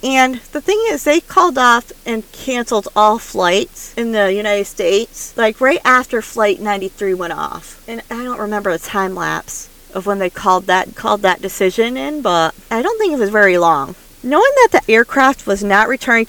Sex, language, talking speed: female, English, 195 wpm